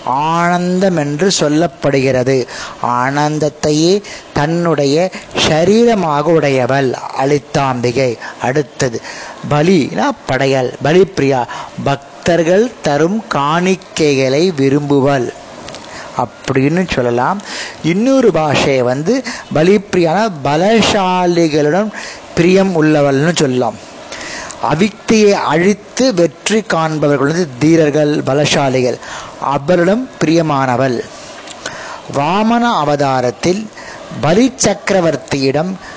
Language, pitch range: Tamil, 145-195 Hz